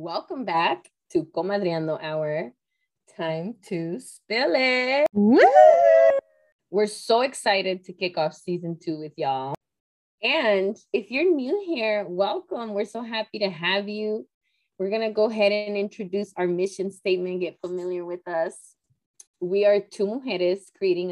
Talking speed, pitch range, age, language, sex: 145 wpm, 160-205 Hz, 20-39, English, female